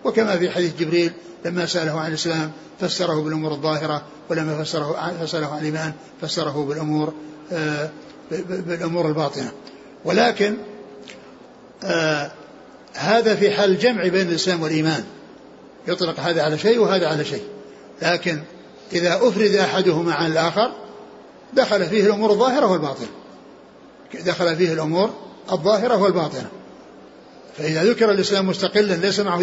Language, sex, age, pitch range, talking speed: Arabic, male, 60-79, 165-205 Hz, 115 wpm